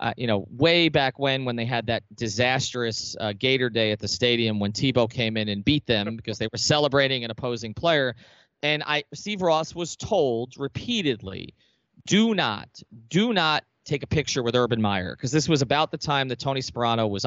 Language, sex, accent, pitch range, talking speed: English, male, American, 110-145 Hz, 200 wpm